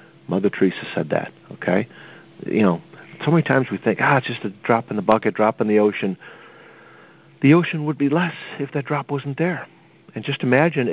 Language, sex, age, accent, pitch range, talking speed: English, male, 50-69, American, 100-140 Hz, 205 wpm